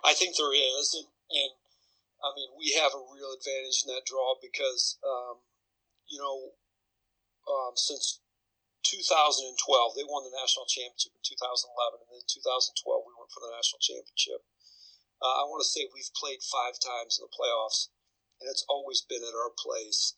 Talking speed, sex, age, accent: 170 wpm, male, 40-59, American